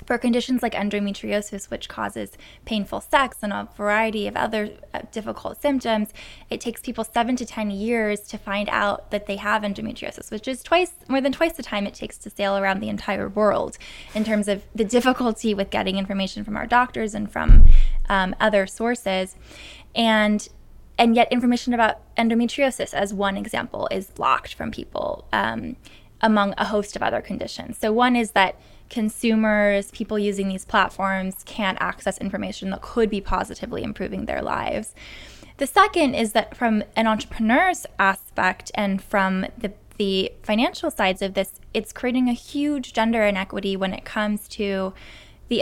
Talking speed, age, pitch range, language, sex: 165 wpm, 10-29, 200-235 Hz, English, female